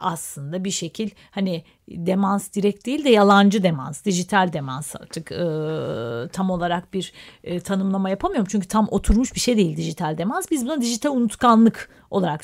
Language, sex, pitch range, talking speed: Turkish, female, 180-235 Hz, 160 wpm